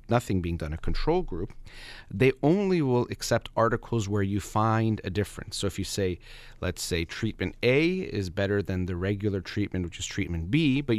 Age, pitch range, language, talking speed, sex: 30-49, 95-120 Hz, English, 190 wpm, male